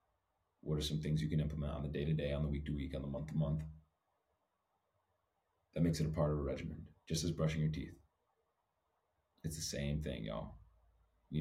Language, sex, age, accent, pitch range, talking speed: English, male, 30-49, American, 70-80 Hz, 185 wpm